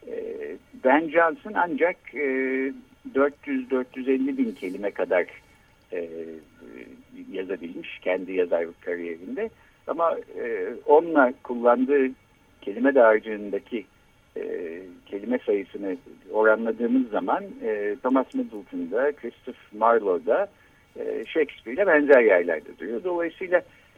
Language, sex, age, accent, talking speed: Turkish, male, 60-79, native, 75 wpm